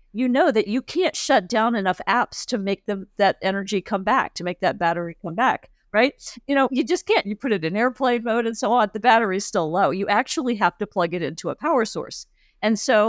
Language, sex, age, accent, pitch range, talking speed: English, female, 50-69, American, 185-230 Hz, 245 wpm